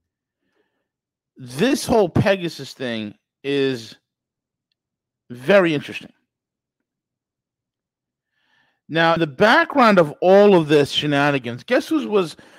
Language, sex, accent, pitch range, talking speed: English, male, American, 135-180 Hz, 90 wpm